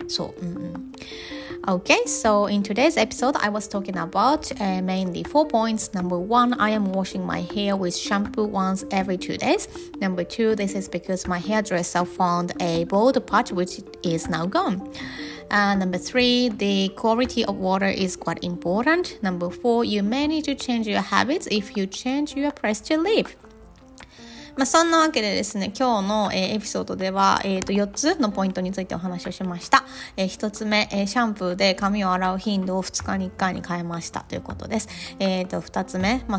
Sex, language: female, Japanese